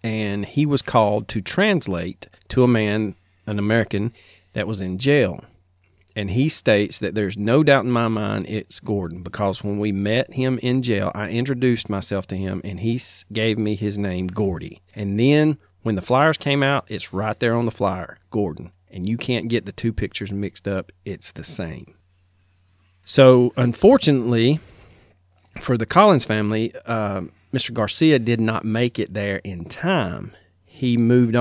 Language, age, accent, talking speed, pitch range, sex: English, 40-59, American, 170 wpm, 95-120 Hz, male